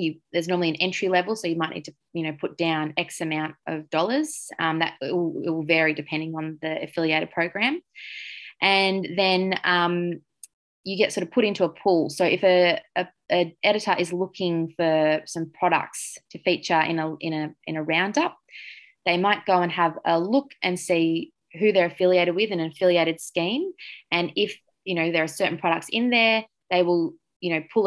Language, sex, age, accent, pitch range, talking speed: English, female, 20-39, Australian, 160-190 Hz, 200 wpm